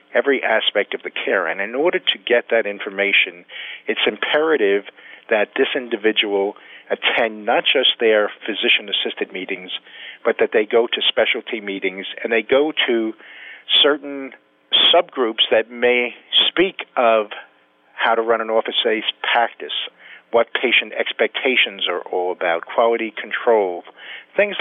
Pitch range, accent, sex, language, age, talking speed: 100-130 Hz, American, male, English, 50-69, 135 wpm